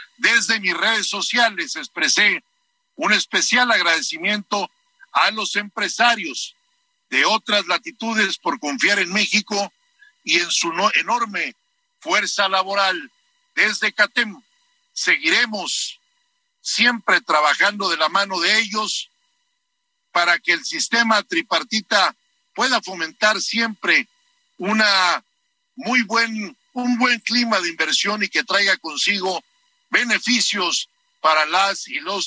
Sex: male